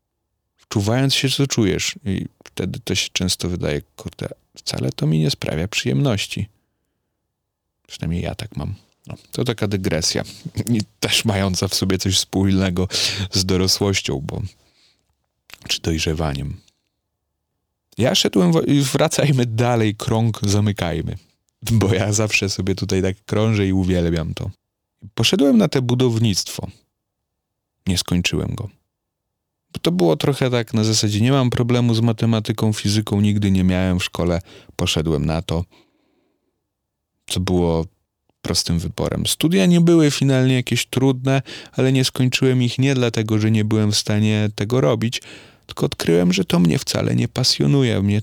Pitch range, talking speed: 95-120 Hz, 135 wpm